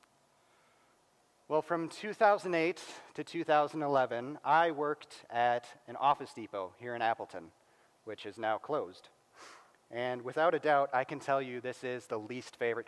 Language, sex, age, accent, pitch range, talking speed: English, male, 30-49, American, 120-155 Hz, 145 wpm